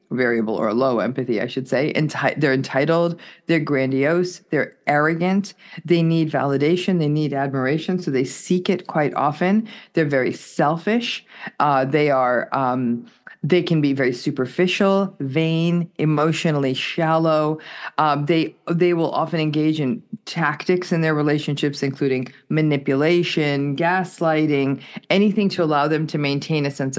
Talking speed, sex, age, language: 135 wpm, female, 40-59, English